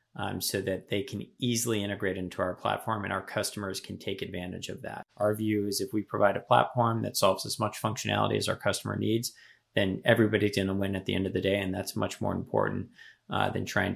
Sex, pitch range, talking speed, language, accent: male, 100-120 Hz, 230 wpm, English, American